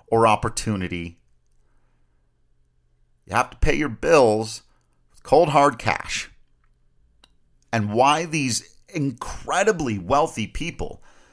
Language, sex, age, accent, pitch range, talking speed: English, male, 40-59, American, 95-135 Hz, 95 wpm